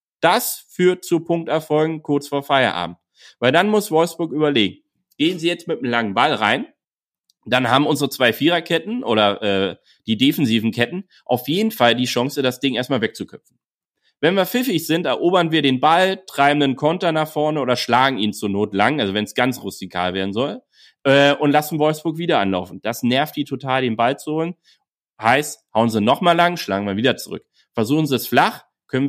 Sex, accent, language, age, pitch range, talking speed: male, German, German, 30-49, 125-165 Hz, 190 wpm